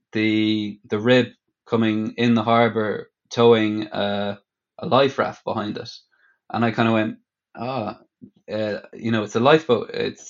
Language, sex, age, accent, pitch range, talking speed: English, male, 20-39, Irish, 110-125 Hz, 150 wpm